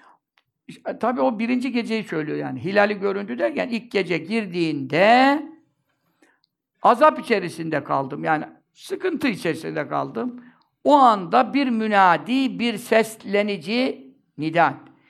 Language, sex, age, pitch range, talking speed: Turkish, male, 60-79, 180-240 Hz, 105 wpm